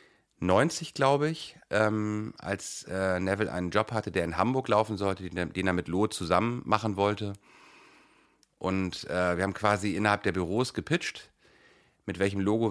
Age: 40-59